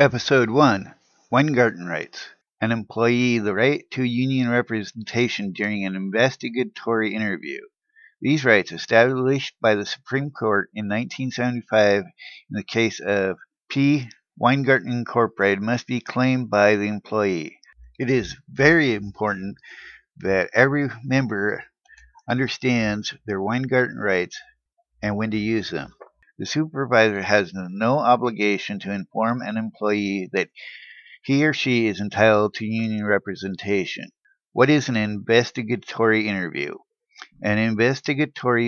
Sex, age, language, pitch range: male, 60-79, English, 105-130 Hz